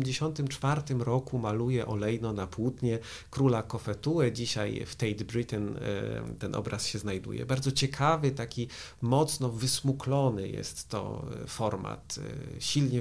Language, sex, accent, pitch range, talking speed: Polish, male, native, 110-130 Hz, 120 wpm